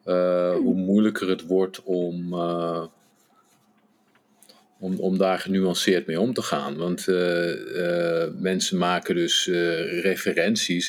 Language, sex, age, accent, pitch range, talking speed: English, male, 50-69, Dutch, 85-100 Hz, 125 wpm